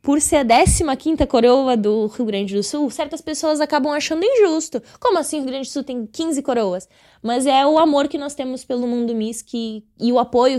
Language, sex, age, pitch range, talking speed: Portuguese, female, 10-29, 235-290 Hz, 215 wpm